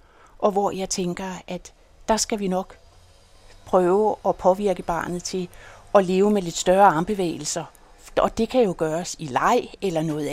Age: 60-79